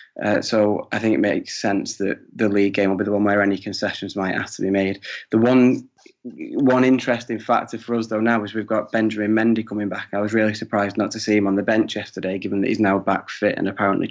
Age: 20-39